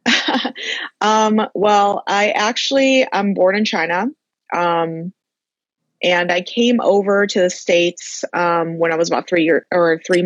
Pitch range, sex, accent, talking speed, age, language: 165-200 Hz, female, American, 145 wpm, 20-39, English